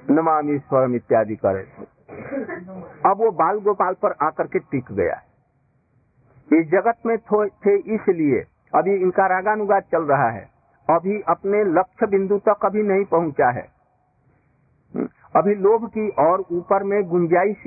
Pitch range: 140-200 Hz